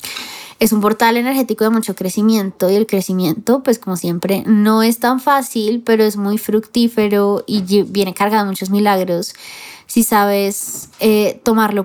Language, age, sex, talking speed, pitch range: Spanish, 20-39, female, 155 wpm, 190-225 Hz